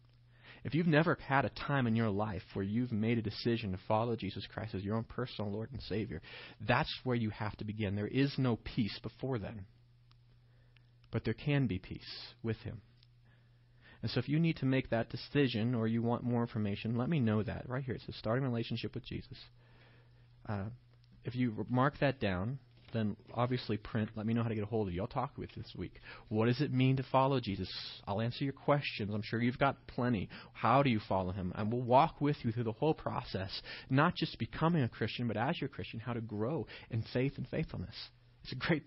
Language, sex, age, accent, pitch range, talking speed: English, male, 30-49, American, 110-130 Hz, 225 wpm